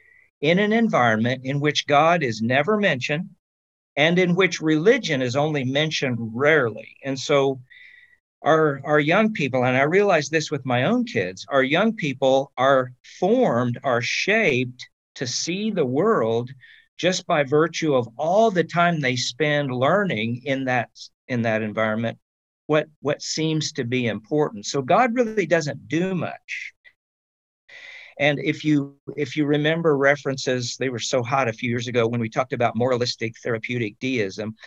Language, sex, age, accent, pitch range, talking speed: English, male, 50-69, American, 120-155 Hz, 160 wpm